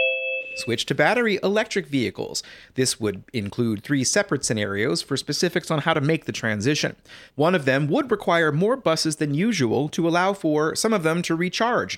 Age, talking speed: 30-49, 180 wpm